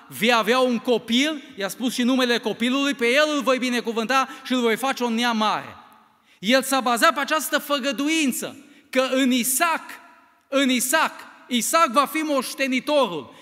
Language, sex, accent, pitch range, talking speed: Romanian, male, native, 245-290 Hz, 160 wpm